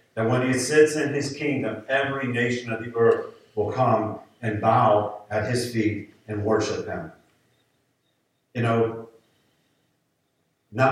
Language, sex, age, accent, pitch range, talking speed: English, male, 50-69, American, 110-130 Hz, 135 wpm